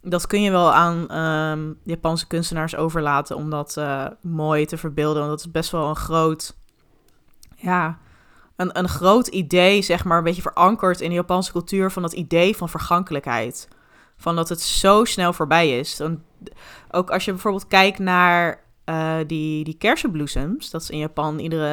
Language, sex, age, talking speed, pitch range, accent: Dutch, female, 20-39, 170 wpm, 160-200 Hz, Dutch